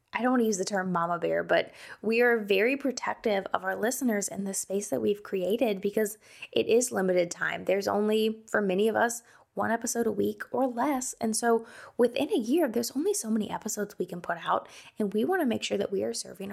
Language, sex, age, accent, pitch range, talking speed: English, female, 20-39, American, 185-230 Hz, 230 wpm